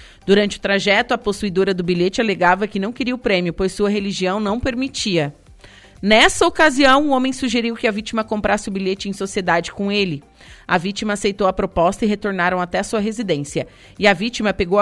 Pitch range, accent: 180-220 Hz, Brazilian